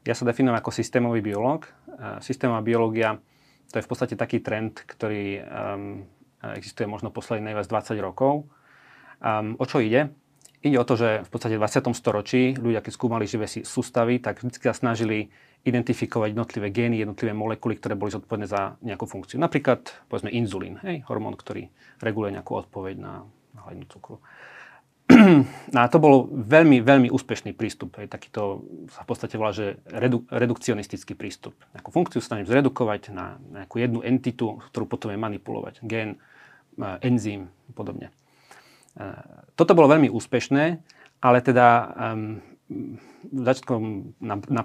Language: Slovak